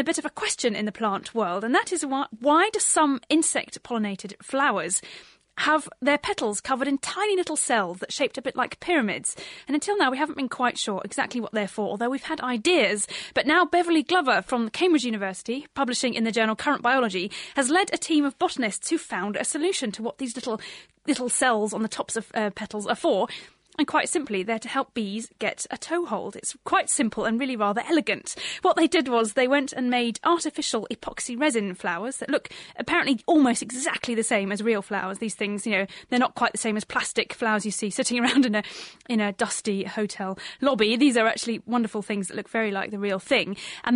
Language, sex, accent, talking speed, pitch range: English, female, British, 220 wpm, 215-295 Hz